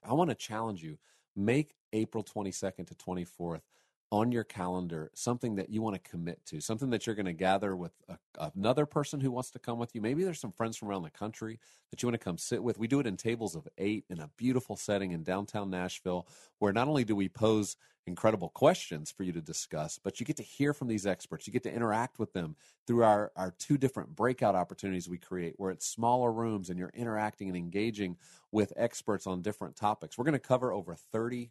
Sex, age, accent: male, 40-59, American